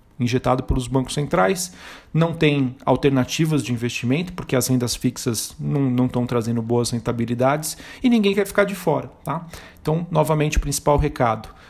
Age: 40-59